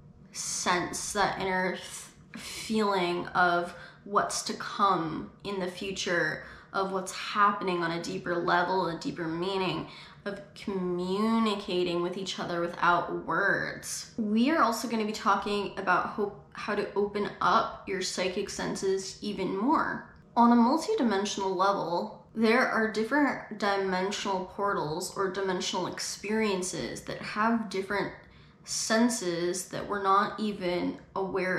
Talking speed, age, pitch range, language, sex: 125 wpm, 10-29, 180-205 Hz, English, female